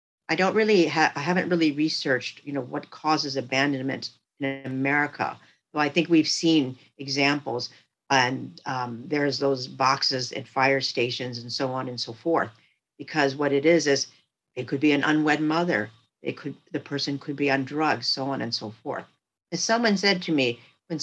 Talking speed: 185 wpm